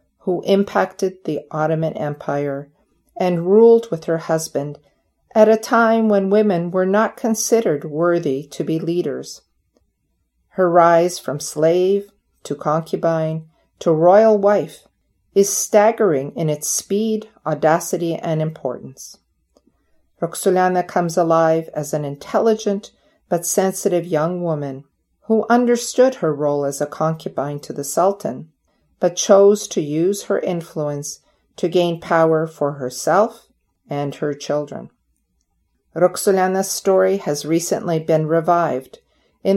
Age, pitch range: 50-69, 155-200 Hz